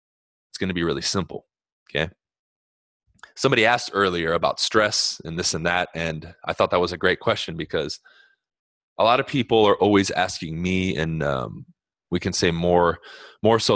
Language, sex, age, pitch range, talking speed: English, male, 20-39, 90-125 Hz, 175 wpm